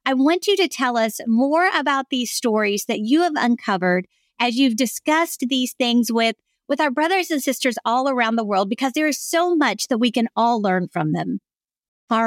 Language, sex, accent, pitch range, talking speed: English, female, American, 220-280 Hz, 205 wpm